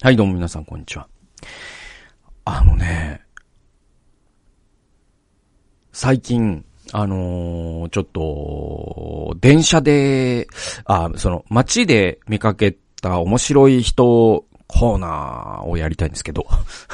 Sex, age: male, 40-59